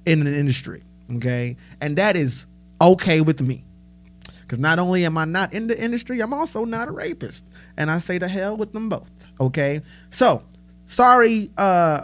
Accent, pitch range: American, 130-180 Hz